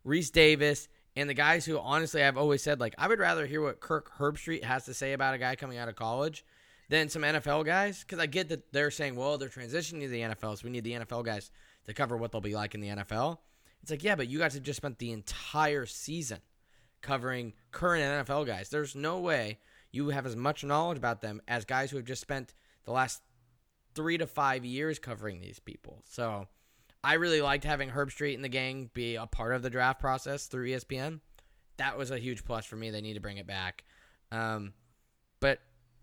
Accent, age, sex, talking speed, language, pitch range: American, 10-29, male, 225 wpm, English, 115-150 Hz